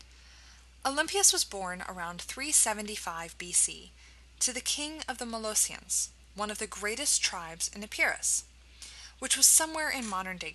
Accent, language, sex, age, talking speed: American, English, female, 20-39, 135 wpm